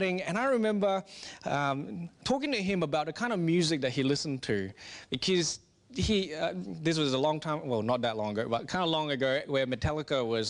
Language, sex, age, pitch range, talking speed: English, male, 30-49, 140-185 Hz, 210 wpm